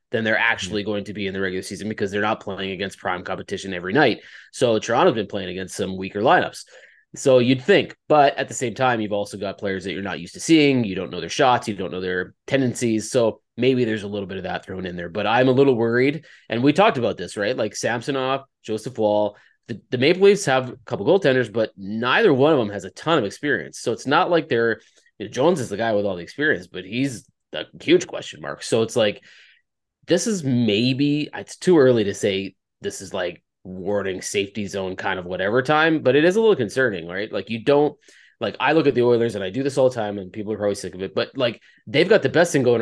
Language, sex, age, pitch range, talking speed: English, male, 20-39, 95-135 Hz, 255 wpm